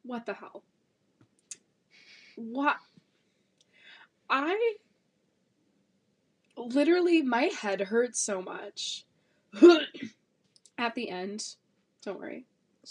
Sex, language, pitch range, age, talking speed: female, English, 195-275 Hz, 20-39, 80 wpm